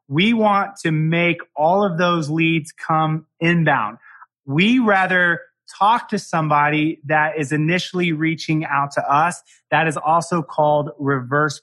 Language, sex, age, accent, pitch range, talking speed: English, male, 30-49, American, 150-185 Hz, 140 wpm